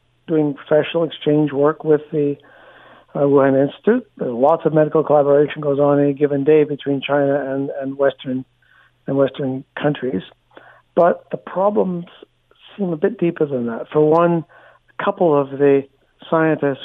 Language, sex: English, male